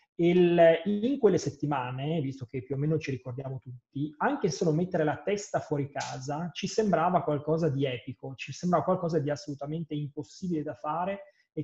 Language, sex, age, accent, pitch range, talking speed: Italian, male, 30-49, native, 135-165 Hz, 170 wpm